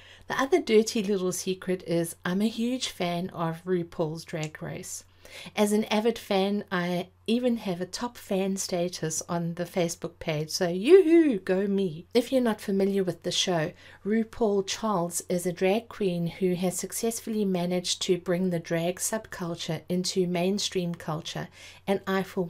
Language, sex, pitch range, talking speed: English, female, 170-200 Hz, 165 wpm